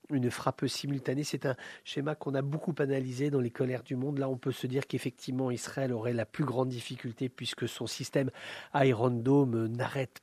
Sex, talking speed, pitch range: male, 195 wpm, 125-145 Hz